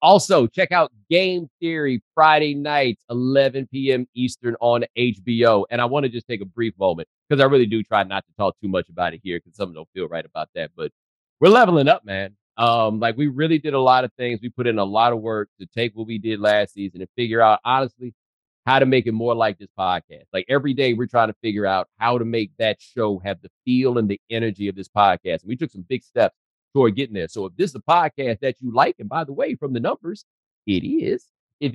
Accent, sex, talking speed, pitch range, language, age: American, male, 245 wpm, 110-140 Hz, English, 30-49